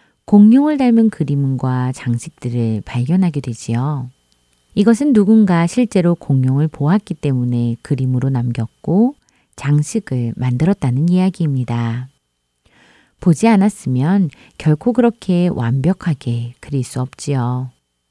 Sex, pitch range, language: female, 125-195 Hz, Korean